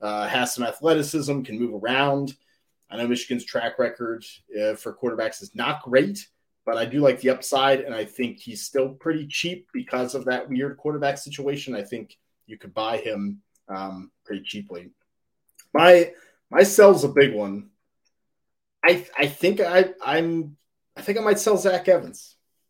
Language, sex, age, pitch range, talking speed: English, male, 30-49, 115-160 Hz, 170 wpm